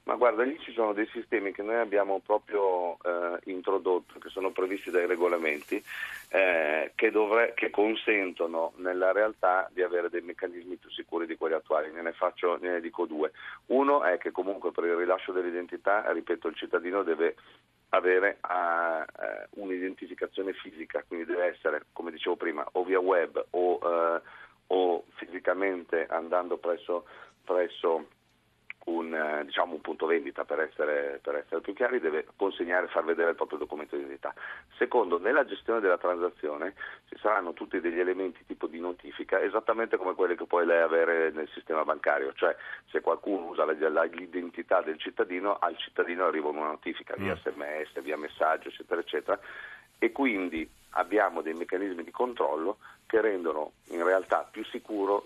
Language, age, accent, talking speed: Italian, 40-59, native, 155 wpm